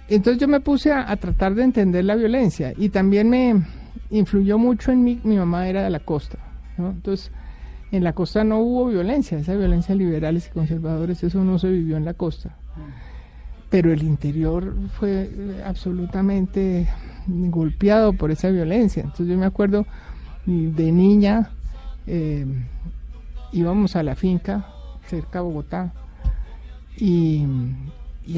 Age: 60-79